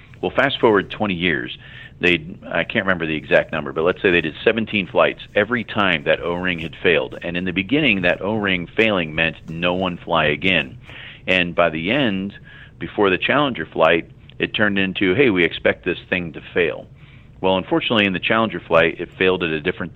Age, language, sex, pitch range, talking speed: 40-59, English, male, 80-110 Hz, 200 wpm